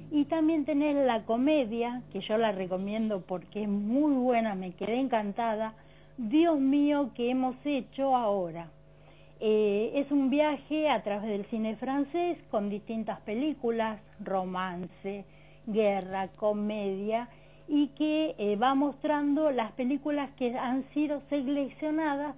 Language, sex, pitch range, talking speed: Spanish, female, 215-290 Hz, 130 wpm